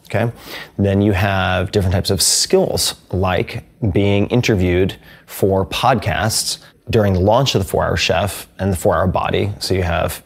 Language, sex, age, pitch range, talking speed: English, male, 30-49, 90-105 Hz, 170 wpm